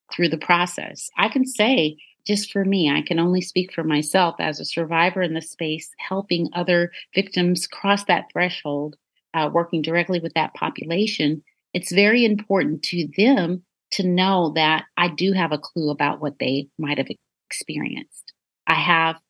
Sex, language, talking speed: female, English, 170 wpm